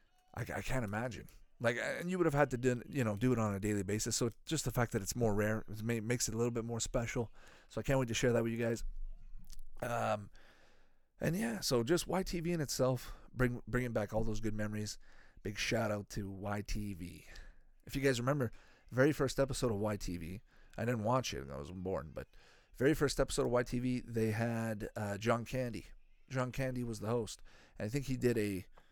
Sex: male